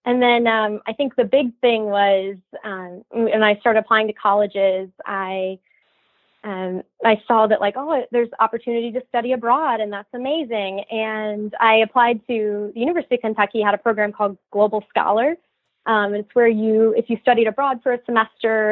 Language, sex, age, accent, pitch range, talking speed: English, female, 20-39, American, 205-235 Hz, 180 wpm